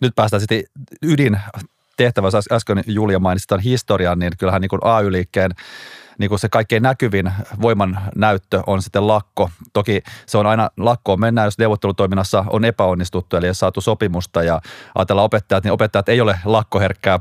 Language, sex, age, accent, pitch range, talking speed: Finnish, male, 30-49, native, 95-115 Hz, 165 wpm